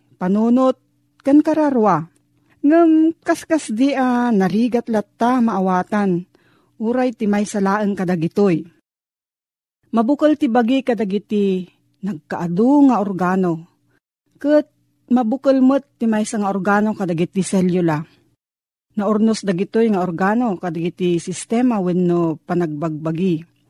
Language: Filipino